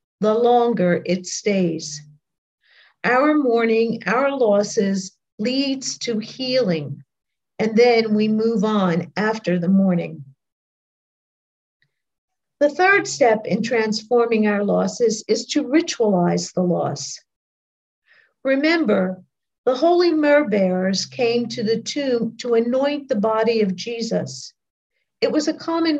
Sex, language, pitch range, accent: female, English, 190-255 Hz, American